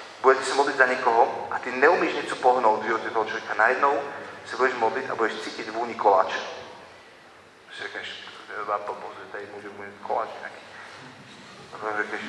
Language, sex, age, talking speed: Slovak, male, 40-59, 140 wpm